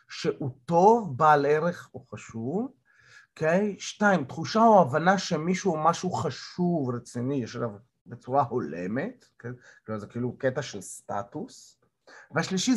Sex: male